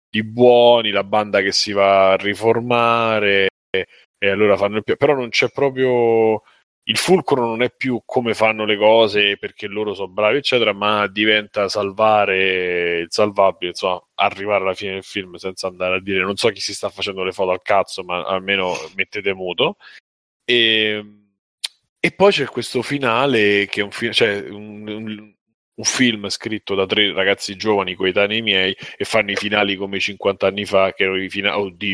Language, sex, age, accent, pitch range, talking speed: Italian, male, 20-39, native, 95-110 Hz, 175 wpm